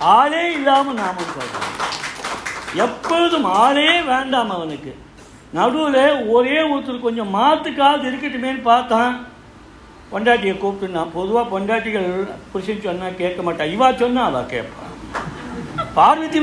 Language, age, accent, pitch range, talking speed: Tamil, 60-79, native, 185-270 Hz, 100 wpm